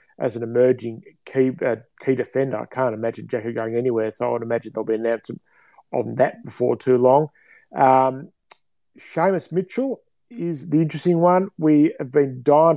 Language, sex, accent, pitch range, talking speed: English, male, Australian, 125-150 Hz, 170 wpm